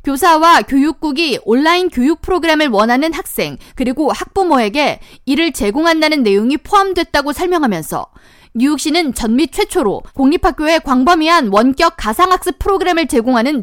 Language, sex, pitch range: Korean, female, 250-355 Hz